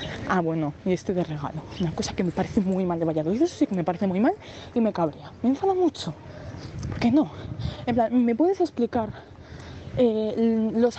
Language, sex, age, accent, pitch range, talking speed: Spanish, female, 20-39, Spanish, 195-260 Hz, 210 wpm